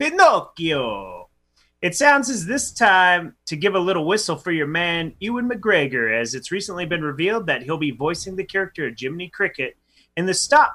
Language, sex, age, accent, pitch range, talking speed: English, male, 30-49, American, 140-190 Hz, 185 wpm